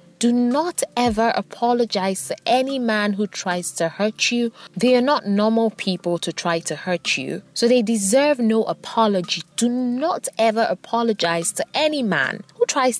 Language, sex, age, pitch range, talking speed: English, female, 20-39, 175-245 Hz, 160 wpm